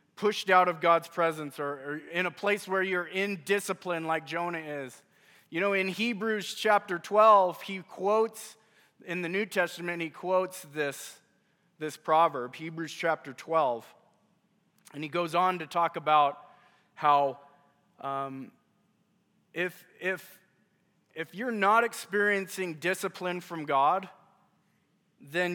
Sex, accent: male, American